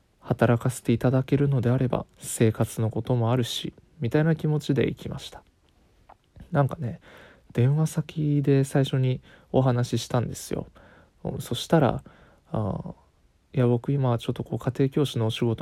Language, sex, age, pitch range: Japanese, male, 20-39, 120-150 Hz